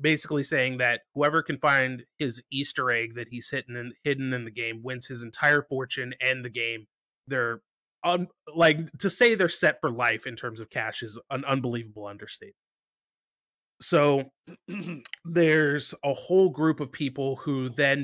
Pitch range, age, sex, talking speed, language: 115-140 Hz, 20-39, male, 165 wpm, English